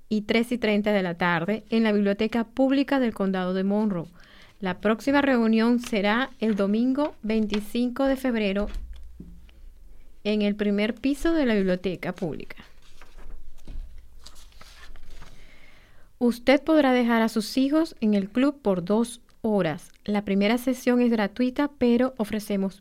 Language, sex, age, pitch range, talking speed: English, female, 30-49, 195-250 Hz, 135 wpm